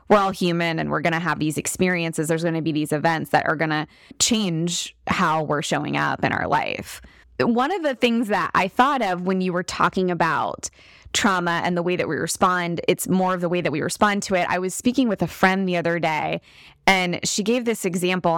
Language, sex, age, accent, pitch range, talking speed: English, female, 20-39, American, 175-215 Hz, 235 wpm